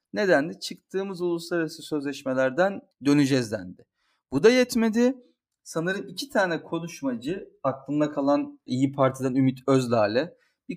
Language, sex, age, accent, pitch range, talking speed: Turkish, male, 40-59, native, 145-220 Hz, 110 wpm